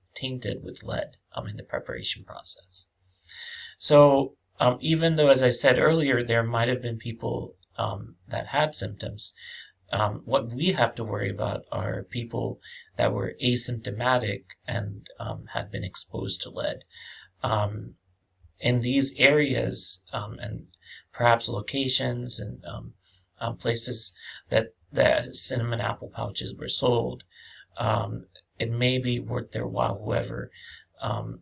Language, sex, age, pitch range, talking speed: English, male, 30-49, 105-130 Hz, 135 wpm